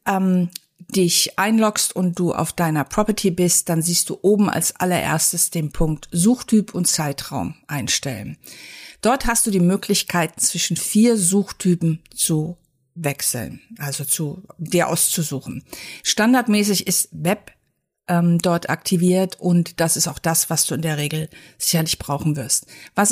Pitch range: 160-190 Hz